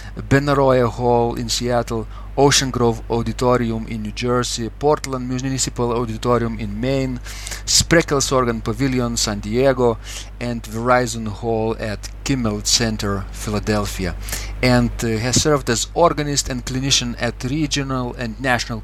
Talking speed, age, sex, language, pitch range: 125 wpm, 40-59, male, English, 110-130 Hz